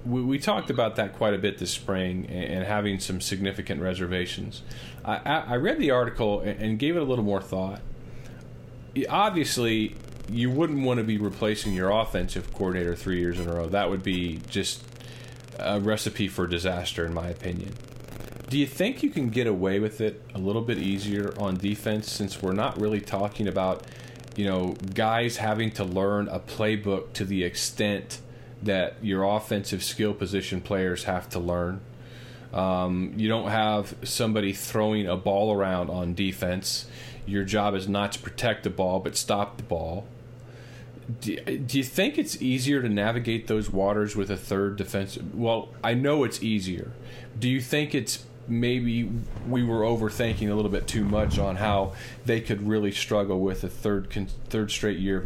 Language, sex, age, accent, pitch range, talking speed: English, male, 40-59, American, 95-120 Hz, 175 wpm